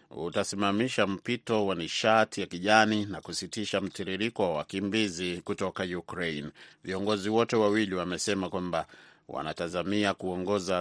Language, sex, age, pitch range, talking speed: Swahili, male, 30-49, 90-105 Hz, 110 wpm